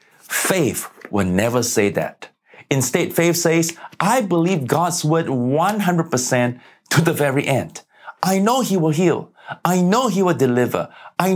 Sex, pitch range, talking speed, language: male, 120-180 Hz, 150 wpm, English